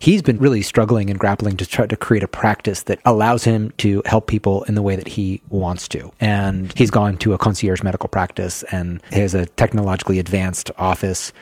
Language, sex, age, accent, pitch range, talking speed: English, male, 30-49, American, 100-115 Hz, 205 wpm